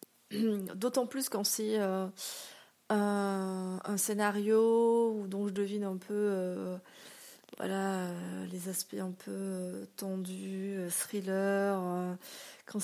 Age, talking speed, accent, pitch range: 30-49, 120 wpm, French, 190-220 Hz